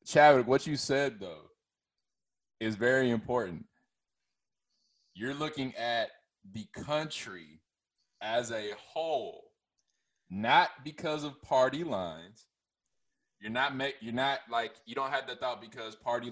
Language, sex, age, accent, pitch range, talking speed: English, male, 20-39, American, 105-125 Hz, 120 wpm